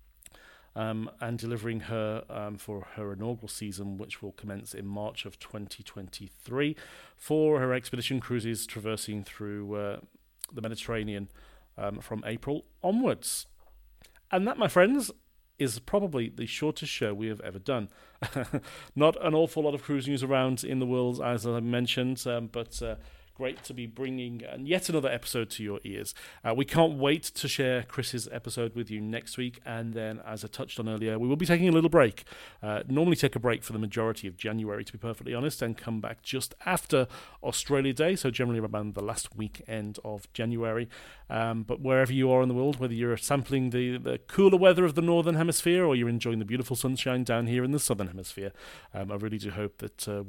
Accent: British